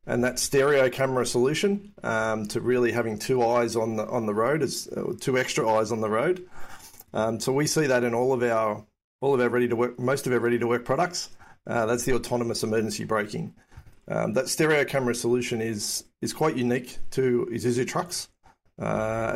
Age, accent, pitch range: 40-59, Australian, 115-130 Hz